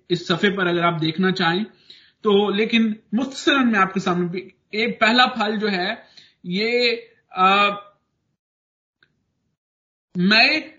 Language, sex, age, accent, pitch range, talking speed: Hindi, male, 50-69, native, 175-225 Hz, 110 wpm